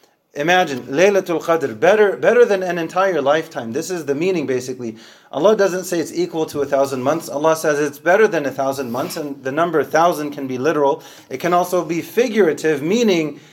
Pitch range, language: 125-160 Hz, English